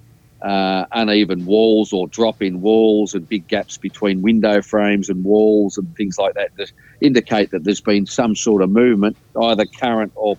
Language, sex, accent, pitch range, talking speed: English, male, Australian, 95-110 Hz, 175 wpm